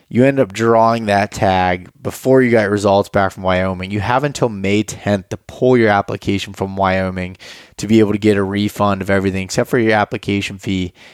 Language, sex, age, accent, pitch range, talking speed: English, male, 20-39, American, 95-110 Hz, 205 wpm